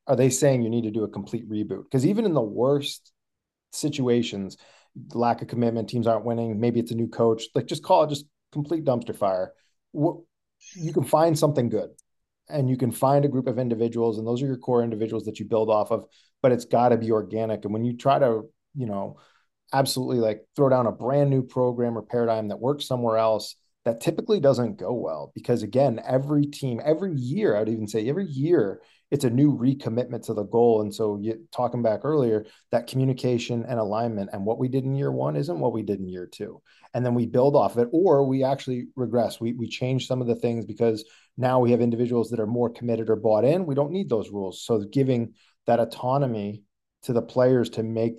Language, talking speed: English, 220 wpm